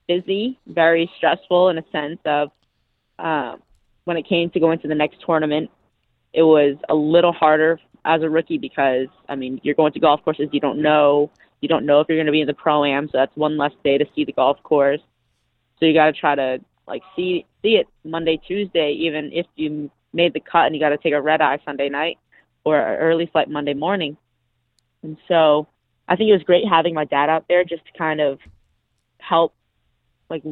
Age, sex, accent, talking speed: 20-39, female, American, 215 wpm